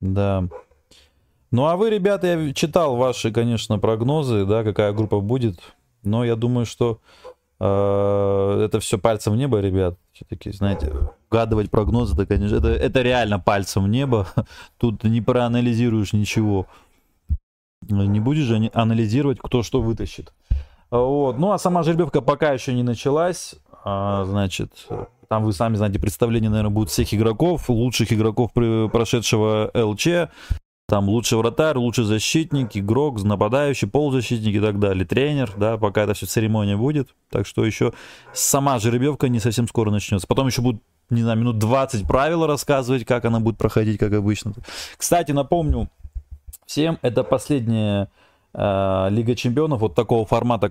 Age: 20-39